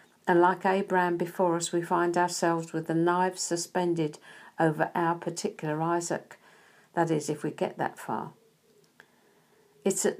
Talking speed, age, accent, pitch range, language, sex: 145 wpm, 50-69, British, 170-210 Hz, English, female